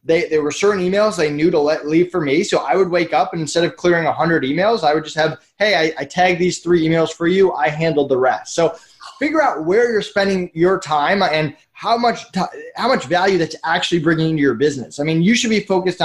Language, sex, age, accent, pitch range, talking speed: English, male, 20-39, American, 155-200 Hz, 255 wpm